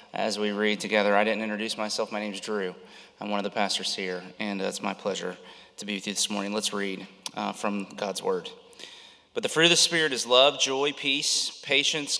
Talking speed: 220 wpm